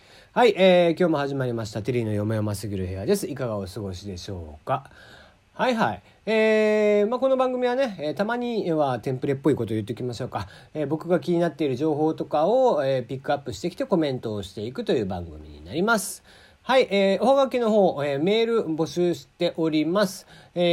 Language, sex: Japanese, male